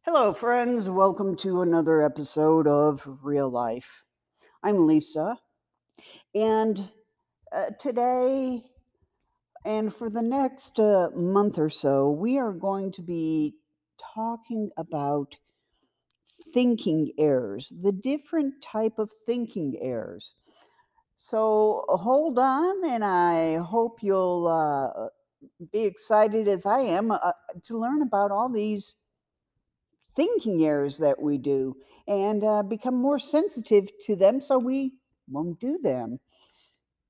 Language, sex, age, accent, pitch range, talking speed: English, female, 60-79, American, 160-235 Hz, 120 wpm